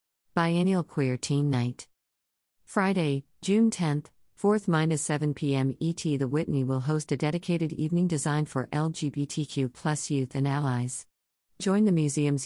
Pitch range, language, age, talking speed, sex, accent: 130-160 Hz, English, 50-69, 130 wpm, female, American